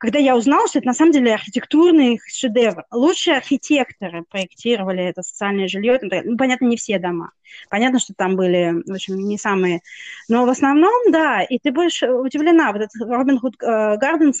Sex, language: female, Russian